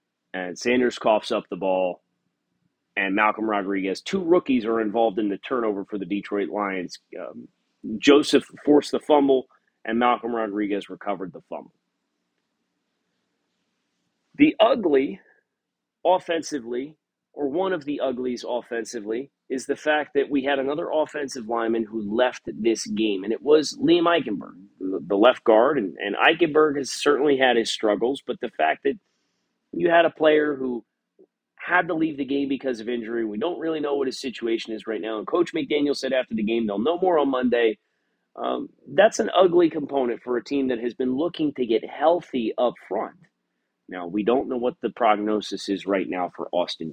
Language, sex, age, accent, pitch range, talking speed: English, male, 30-49, American, 110-145 Hz, 175 wpm